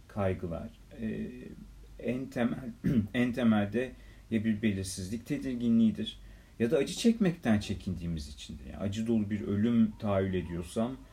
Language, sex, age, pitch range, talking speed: Turkish, male, 40-59, 85-115 Hz, 125 wpm